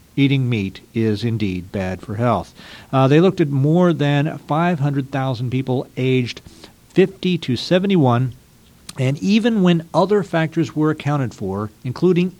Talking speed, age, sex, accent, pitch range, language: 135 wpm, 50-69, male, American, 115-150 Hz, English